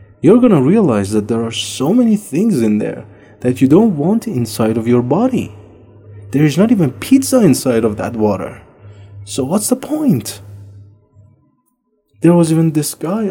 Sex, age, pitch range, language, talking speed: male, 30-49, 110-170 Hz, English, 170 wpm